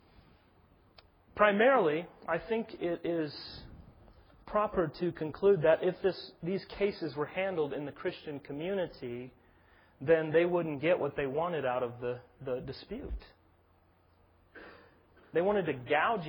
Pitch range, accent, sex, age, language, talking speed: 135-205 Hz, American, male, 30-49, English, 125 wpm